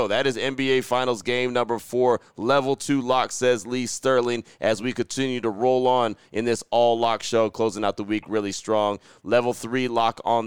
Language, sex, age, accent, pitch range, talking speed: English, male, 30-49, American, 110-130 Hz, 190 wpm